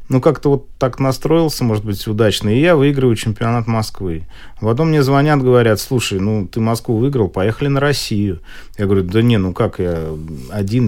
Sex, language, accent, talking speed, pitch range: male, Russian, native, 190 wpm, 100-130 Hz